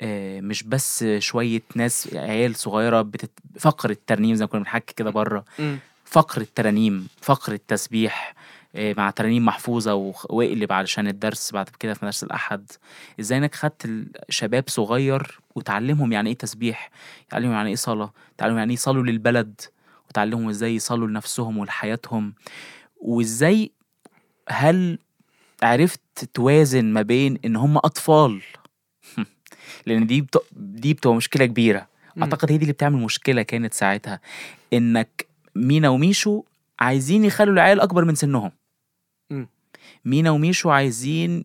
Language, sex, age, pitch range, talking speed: Arabic, male, 20-39, 110-150 Hz, 130 wpm